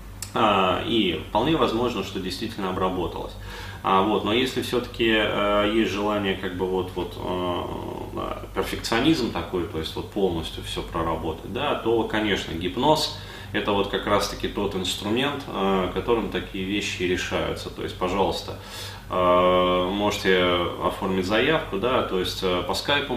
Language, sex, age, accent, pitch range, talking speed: Russian, male, 20-39, native, 90-105 Hz, 140 wpm